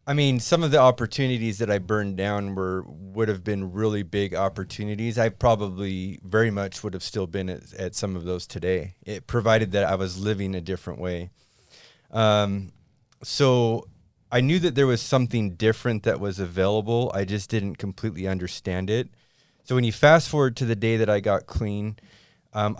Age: 30-49